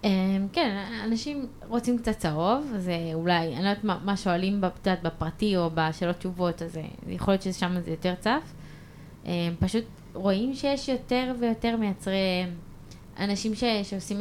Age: 20-39